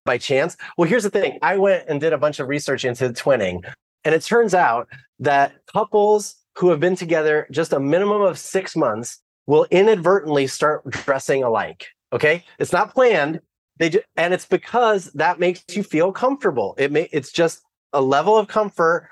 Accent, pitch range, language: American, 145-190 Hz, English